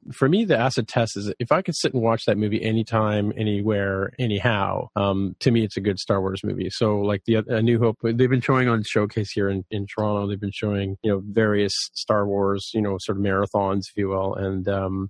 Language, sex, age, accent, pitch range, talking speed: English, male, 30-49, American, 105-120 Hz, 235 wpm